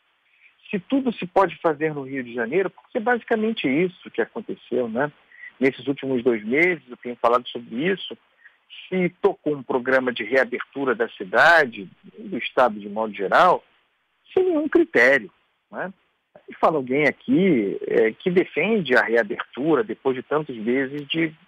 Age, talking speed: 50-69, 155 wpm